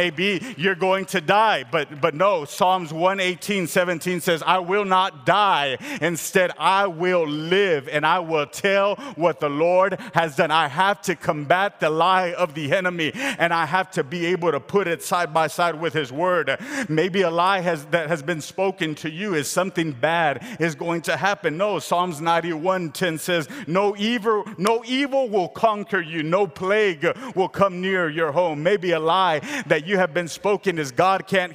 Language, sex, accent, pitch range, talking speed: English, male, American, 170-205 Hz, 190 wpm